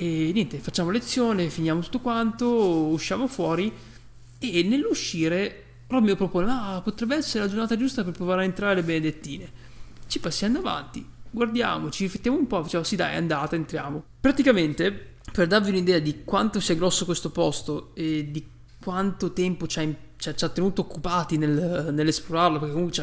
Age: 20-39